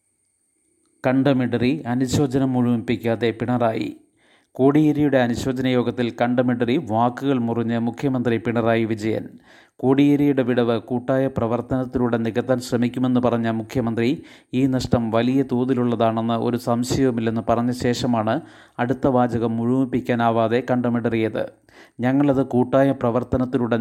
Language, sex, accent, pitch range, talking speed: Malayalam, male, native, 115-130 Hz, 90 wpm